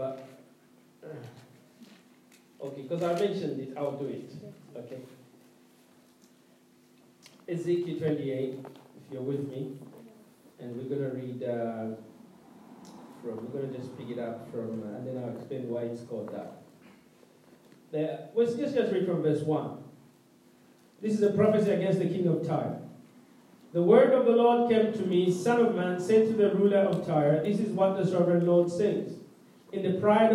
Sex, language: male, English